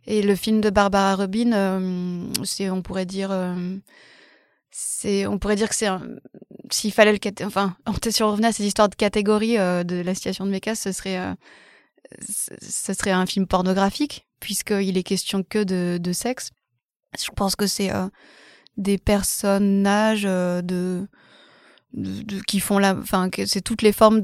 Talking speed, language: 185 wpm, French